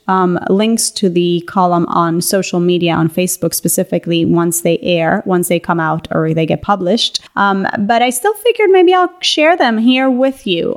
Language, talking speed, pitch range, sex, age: English, 190 wpm, 175-215 Hz, female, 30-49